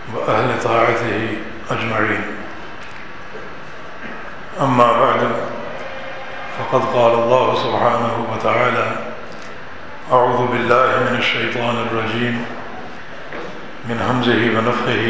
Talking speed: 70 wpm